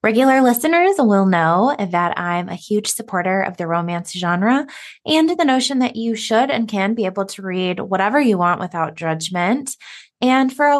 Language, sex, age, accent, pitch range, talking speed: English, female, 20-39, American, 190-255 Hz, 185 wpm